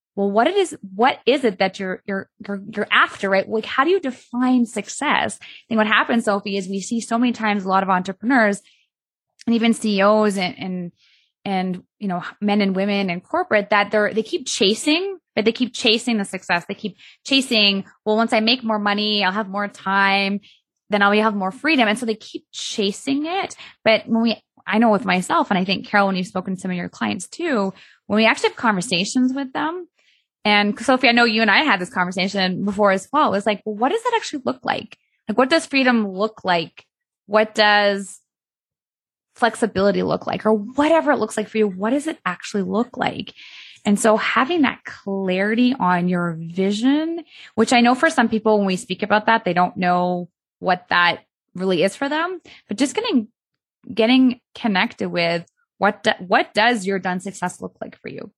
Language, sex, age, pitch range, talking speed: English, female, 20-39, 195-250 Hz, 205 wpm